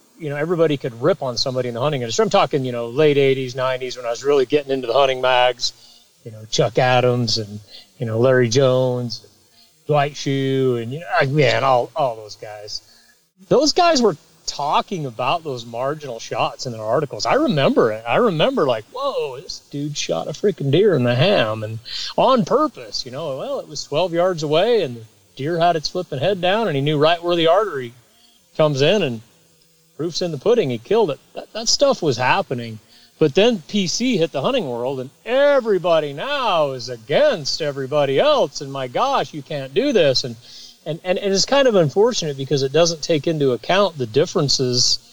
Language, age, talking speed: English, 30-49, 200 wpm